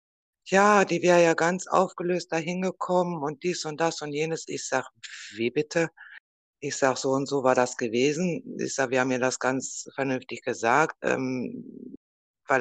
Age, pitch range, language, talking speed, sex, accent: 60-79, 135-160 Hz, German, 175 wpm, female, German